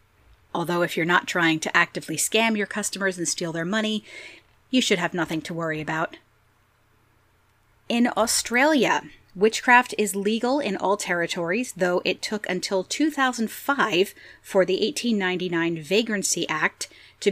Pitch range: 160-220 Hz